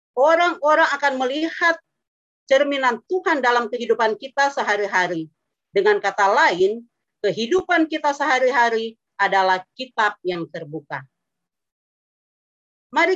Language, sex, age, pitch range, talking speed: Indonesian, female, 40-59, 205-300 Hz, 90 wpm